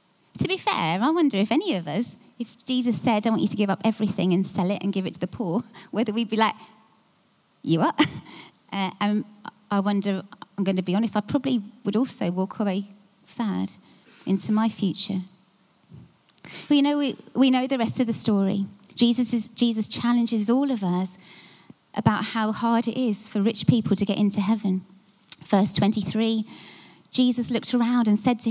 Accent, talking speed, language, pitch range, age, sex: British, 190 wpm, English, 195-240 Hz, 30-49, female